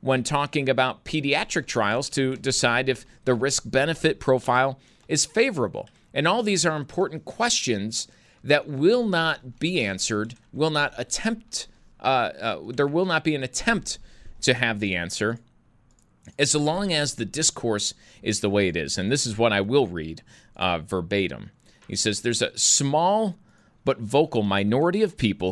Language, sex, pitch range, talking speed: English, male, 110-160 Hz, 160 wpm